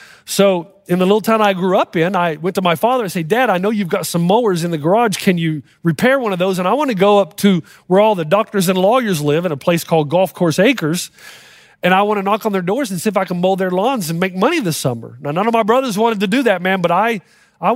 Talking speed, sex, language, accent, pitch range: 285 wpm, male, English, American, 185-250 Hz